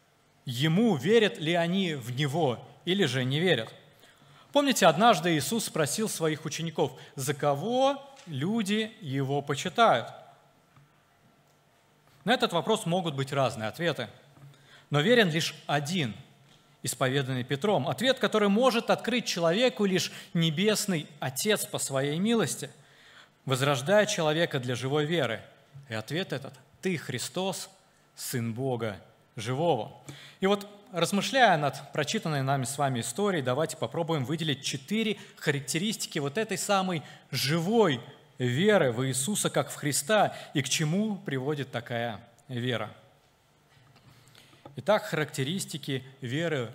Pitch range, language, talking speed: 135-190 Hz, Russian, 115 wpm